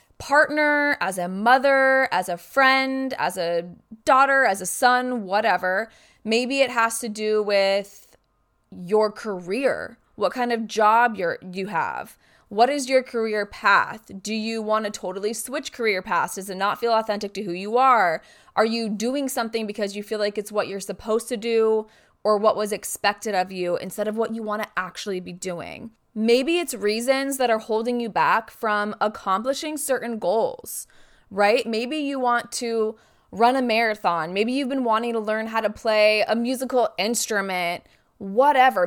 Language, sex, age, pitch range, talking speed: English, female, 20-39, 205-255 Hz, 175 wpm